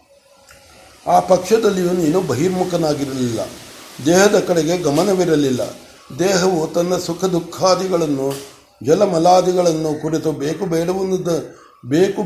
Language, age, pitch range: Kannada, 60-79, 155-190 Hz